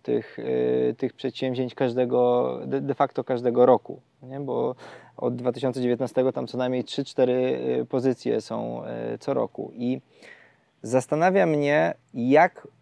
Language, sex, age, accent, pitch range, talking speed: Polish, male, 20-39, native, 120-135 Hz, 110 wpm